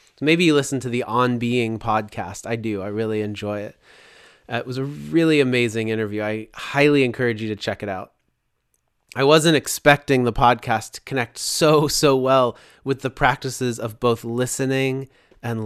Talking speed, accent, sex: 175 wpm, American, male